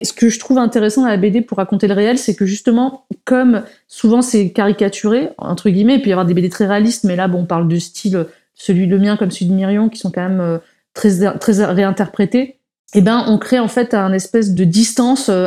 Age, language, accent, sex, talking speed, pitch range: 20-39, French, French, female, 235 wpm, 195-235 Hz